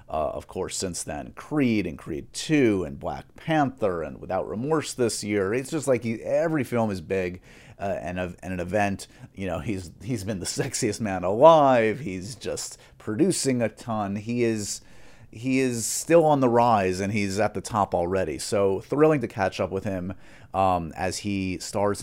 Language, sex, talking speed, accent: English, male, 190 wpm, American